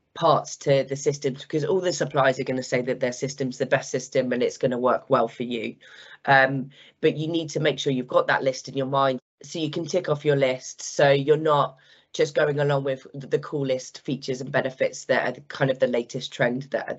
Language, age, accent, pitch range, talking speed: English, 20-39, British, 130-150 Hz, 240 wpm